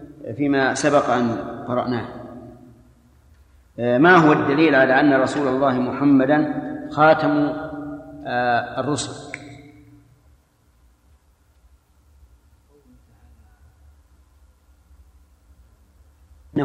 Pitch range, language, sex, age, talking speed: 115-155 Hz, Arabic, male, 40-59, 55 wpm